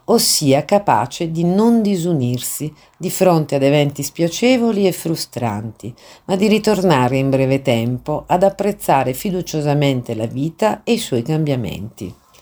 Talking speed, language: 130 wpm, Italian